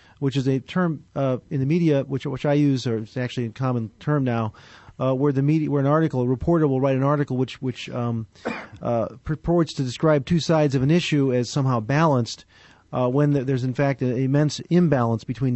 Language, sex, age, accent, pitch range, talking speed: English, male, 40-59, American, 125-150 Hz, 215 wpm